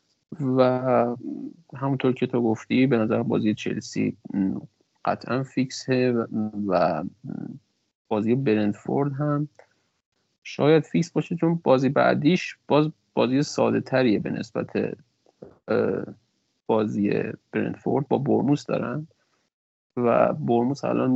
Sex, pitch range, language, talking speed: male, 115-150 Hz, Persian, 100 wpm